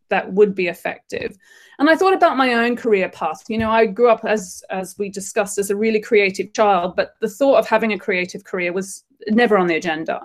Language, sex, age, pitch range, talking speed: English, female, 30-49, 195-255 Hz, 230 wpm